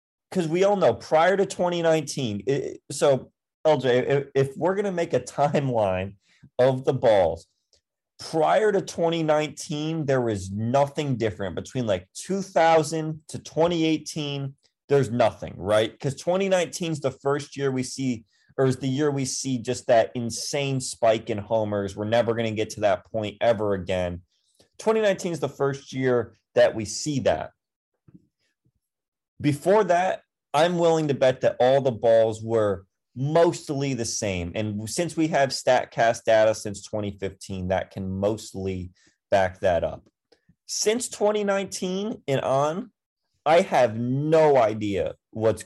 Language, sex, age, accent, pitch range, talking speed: English, male, 30-49, American, 110-150 Hz, 145 wpm